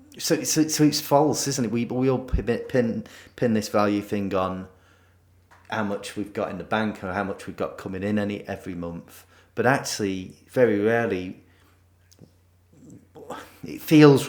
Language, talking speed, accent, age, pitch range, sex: English, 170 wpm, British, 30-49, 90-115 Hz, male